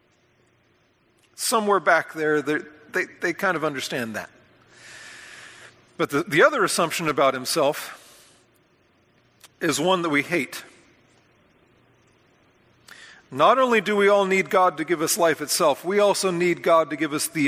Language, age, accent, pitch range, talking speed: English, 40-59, American, 145-195 Hz, 135 wpm